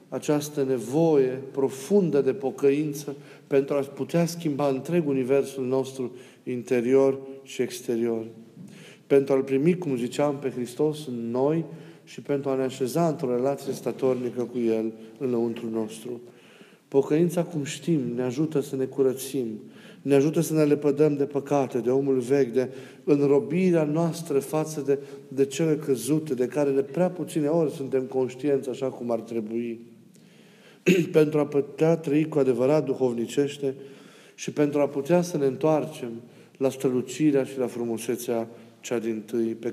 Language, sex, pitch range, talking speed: Romanian, male, 125-155 Hz, 145 wpm